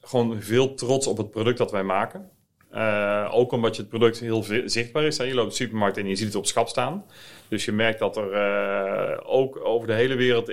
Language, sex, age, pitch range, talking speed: Dutch, male, 40-59, 100-115 Hz, 235 wpm